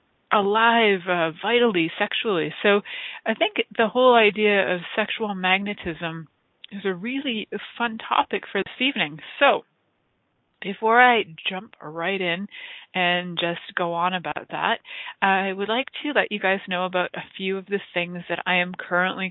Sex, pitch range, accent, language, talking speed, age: female, 175-220 Hz, American, English, 160 wpm, 30-49